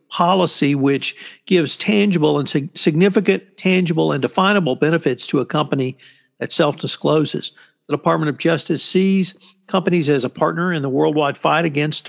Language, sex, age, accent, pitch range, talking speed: English, male, 50-69, American, 140-170 Hz, 145 wpm